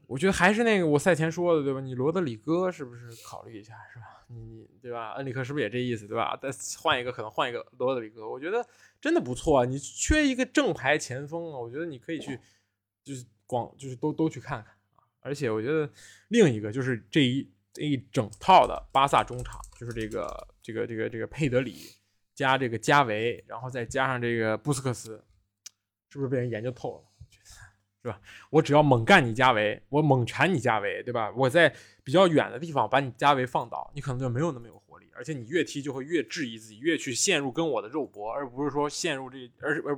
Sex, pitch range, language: male, 115-155 Hz, Chinese